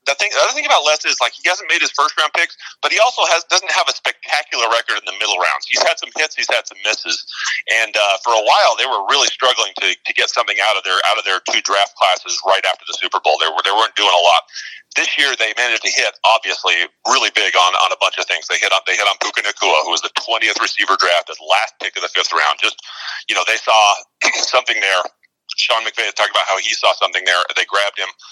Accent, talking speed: American, 270 wpm